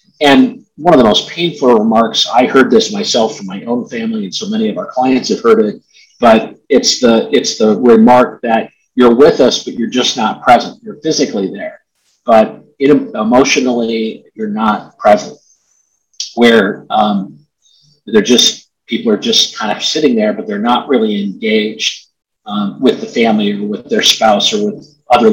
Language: English